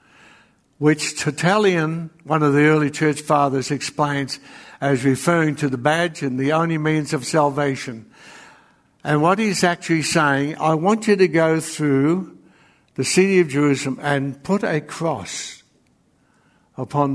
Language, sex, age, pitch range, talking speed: English, male, 60-79, 135-160 Hz, 140 wpm